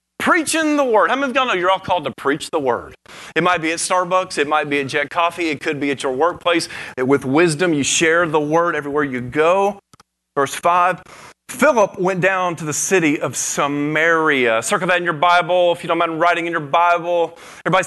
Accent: American